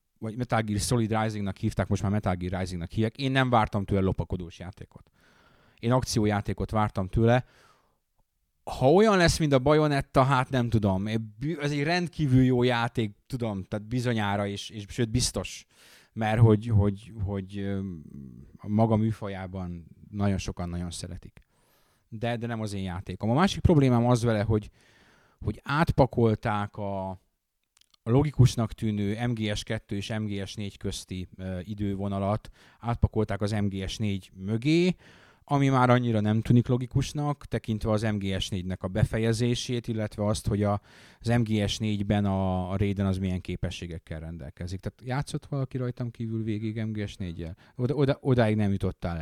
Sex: male